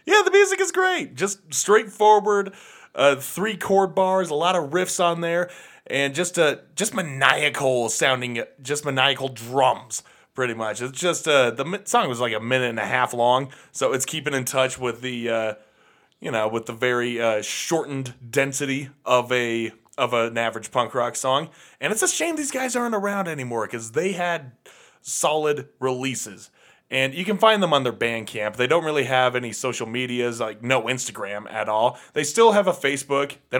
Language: English